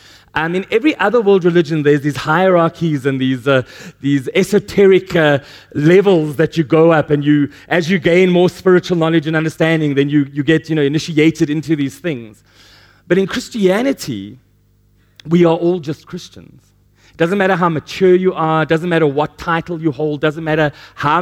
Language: English